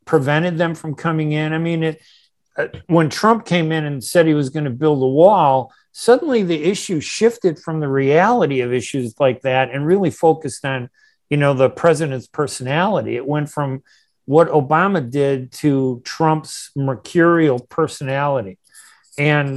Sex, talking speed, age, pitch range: male, 160 wpm, 50-69, 130-165 Hz